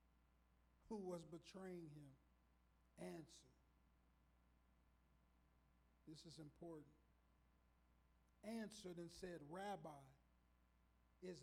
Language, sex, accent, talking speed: English, male, American, 70 wpm